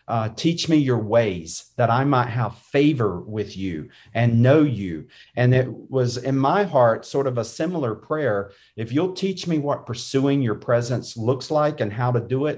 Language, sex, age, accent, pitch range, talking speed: English, male, 50-69, American, 120-145 Hz, 195 wpm